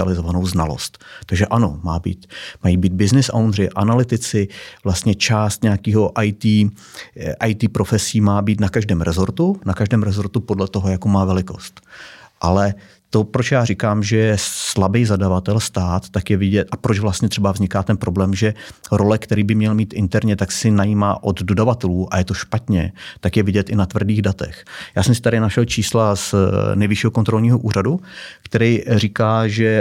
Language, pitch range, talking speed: Czech, 95-110 Hz, 165 wpm